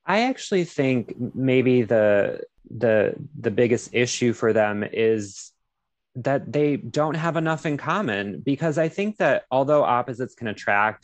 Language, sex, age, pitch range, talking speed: English, male, 20-39, 110-145 Hz, 145 wpm